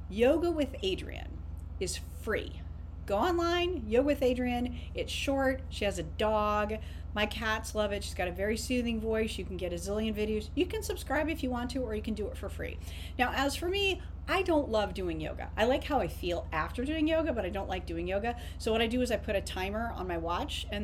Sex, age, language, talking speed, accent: female, 40-59, English, 235 wpm, American